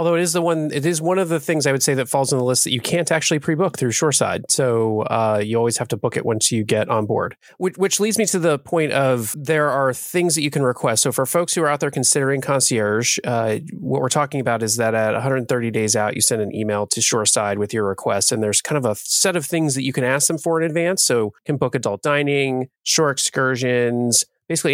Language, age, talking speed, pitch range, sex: English, 30-49, 260 wpm, 110-145 Hz, male